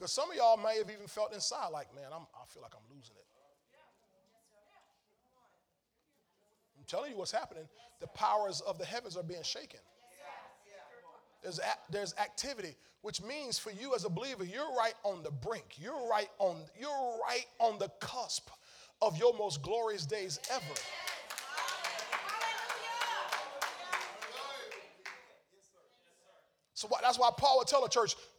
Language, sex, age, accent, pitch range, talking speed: English, male, 30-49, American, 200-255 Hz, 145 wpm